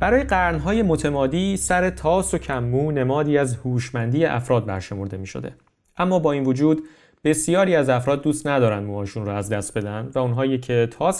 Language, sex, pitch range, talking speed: Persian, male, 110-150 Hz, 170 wpm